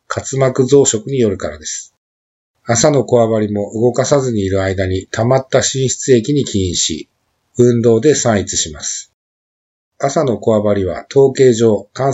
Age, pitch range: 50-69, 100-130 Hz